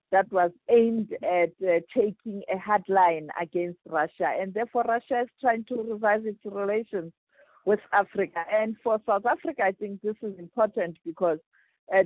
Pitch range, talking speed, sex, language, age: 180-225 Hz, 165 wpm, female, English, 50-69